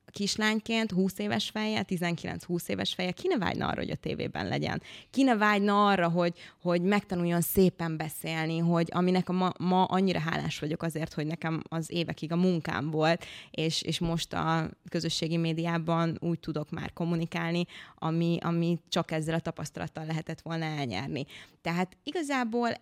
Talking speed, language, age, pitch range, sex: 145 wpm, Hungarian, 20-39, 160-185 Hz, female